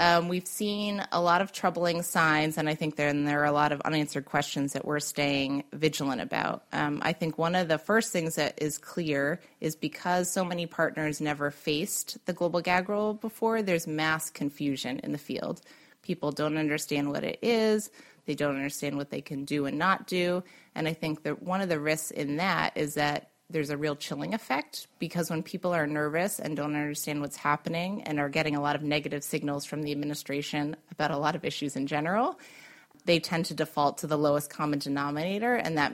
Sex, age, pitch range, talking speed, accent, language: female, 30-49, 145-175 Hz, 210 wpm, American, English